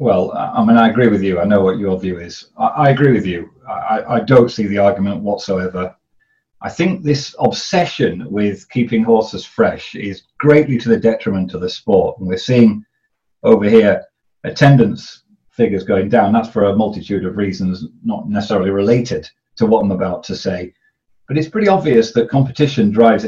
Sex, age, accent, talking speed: male, 40-59, British, 185 wpm